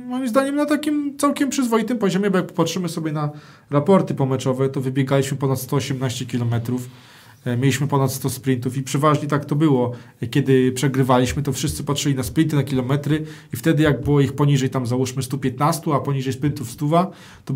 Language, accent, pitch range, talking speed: Polish, native, 135-180 Hz, 175 wpm